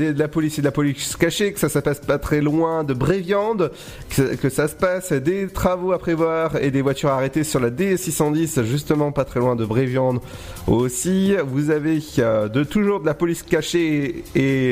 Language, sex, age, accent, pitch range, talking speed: French, male, 30-49, French, 135-175 Hz, 210 wpm